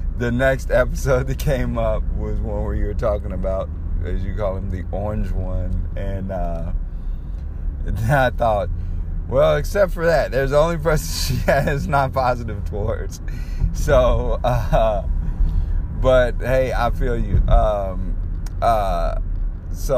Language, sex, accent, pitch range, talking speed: English, male, American, 80-95 Hz, 145 wpm